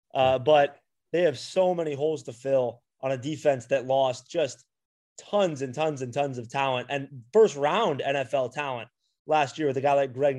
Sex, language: male, English